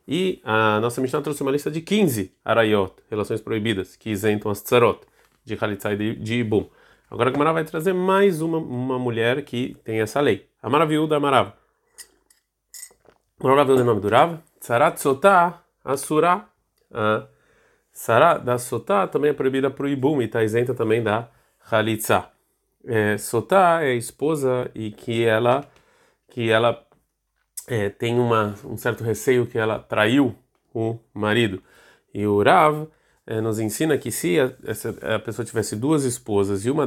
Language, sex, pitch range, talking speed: Portuguese, male, 110-145 Hz, 160 wpm